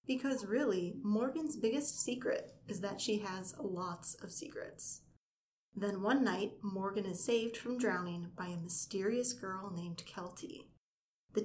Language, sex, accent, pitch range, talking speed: English, female, American, 195-260 Hz, 140 wpm